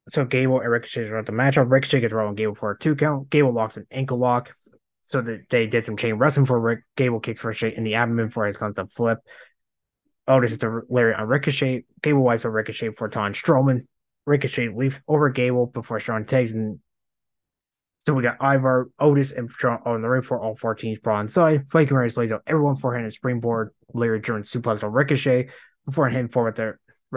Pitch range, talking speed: 115-135 Hz, 210 wpm